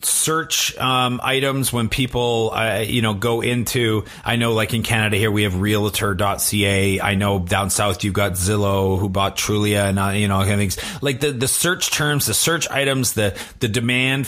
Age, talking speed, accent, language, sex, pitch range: 30-49, 195 wpm, American, English, male, 105-130 Hz